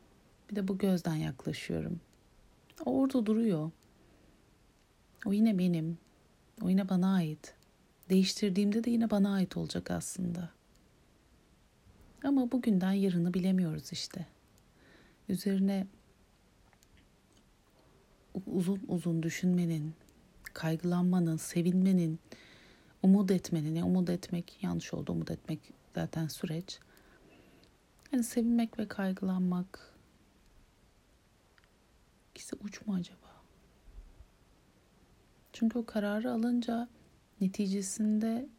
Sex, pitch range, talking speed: female, 165-215 Hz, 85 wpm